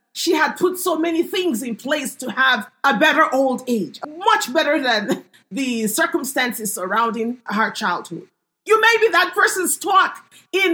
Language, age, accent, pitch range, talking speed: English, 30-49, Nigerian, 330-405 Hz, 160 wpm